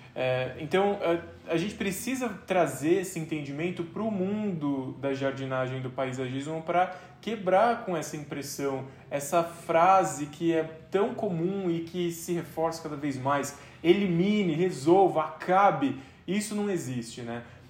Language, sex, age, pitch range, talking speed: Portuguese, male, 20-39, 145-180 Hz, 140 wpm